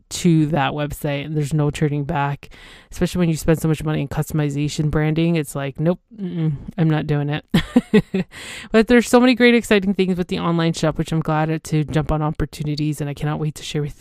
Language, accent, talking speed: English, American, 225 wpm